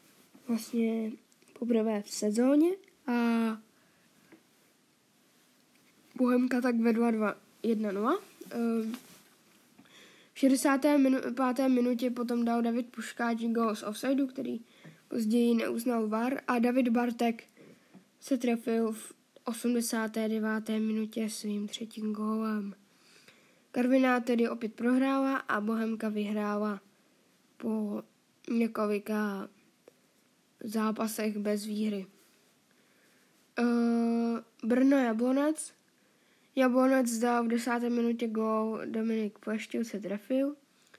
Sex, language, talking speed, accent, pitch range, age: female, Czech, 90 wpm, native, 220-250 Hz, 10-29